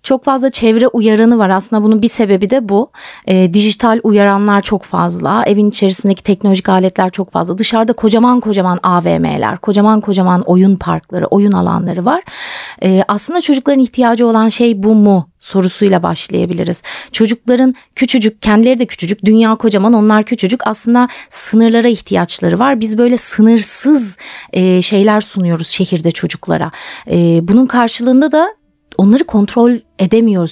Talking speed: 140 wpm